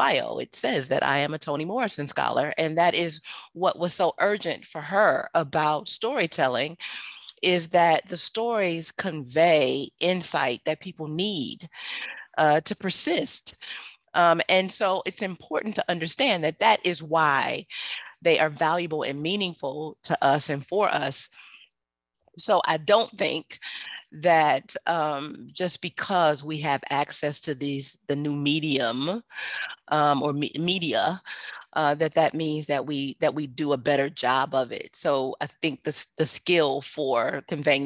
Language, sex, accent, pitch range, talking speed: English, female, American, 145-185 Hz, 150 wpm